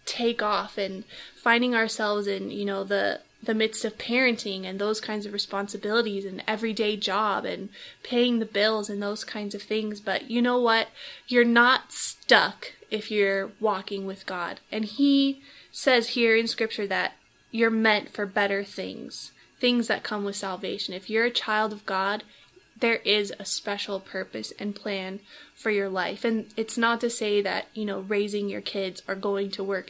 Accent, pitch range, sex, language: American, 200-230 Hz, female, English